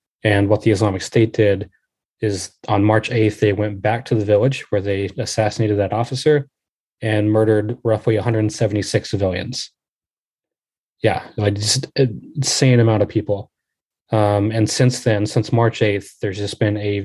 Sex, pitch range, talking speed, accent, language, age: male, 105-120 Hz, 155 wpm, American, English, 20-39